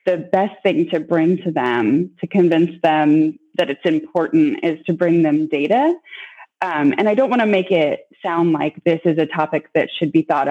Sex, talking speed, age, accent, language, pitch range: female, 205 wpm, 20-39, American, English, 160-200 Hz